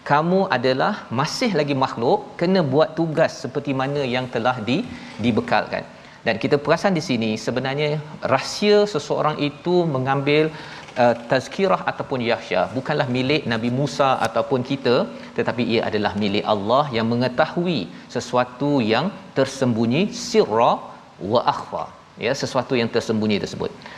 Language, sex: Malayalam, male